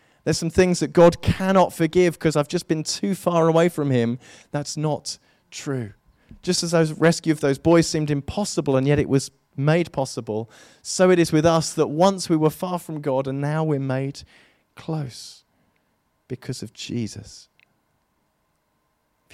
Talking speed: 170 wpm